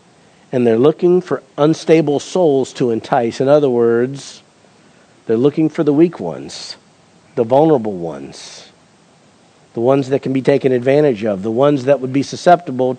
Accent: American